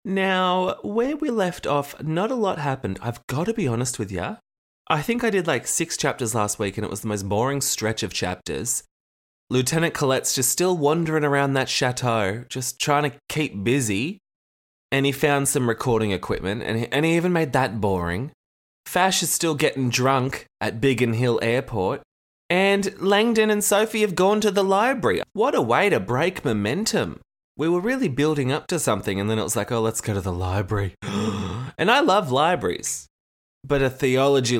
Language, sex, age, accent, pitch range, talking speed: English, male, 20-39, Australian, 105-160 Hz, 190 wpm